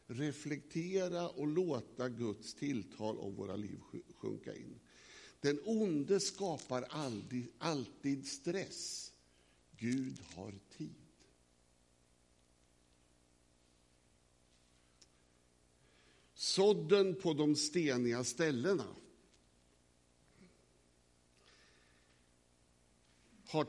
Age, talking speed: 60-79, 60 wpm